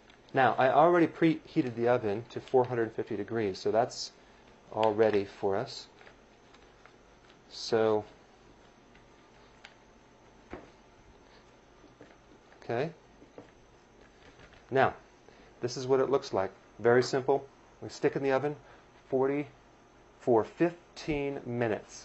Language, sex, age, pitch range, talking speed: English, male, 40-59, 110-135 Hz, 95 wpm